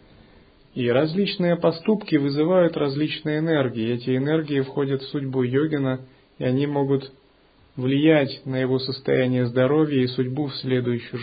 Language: Russian